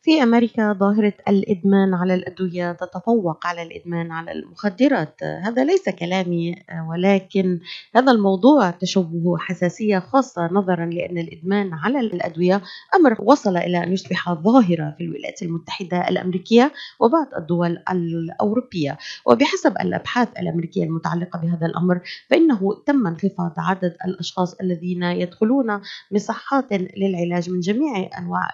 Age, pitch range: 30-49, 175-215 Hz